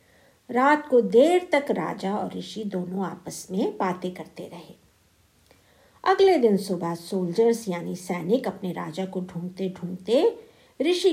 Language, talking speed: Hindi, 130 wpm